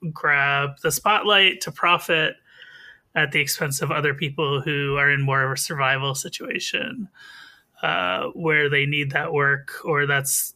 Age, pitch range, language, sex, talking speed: 30-49, 145-195 Hz, English, male, 155 wpm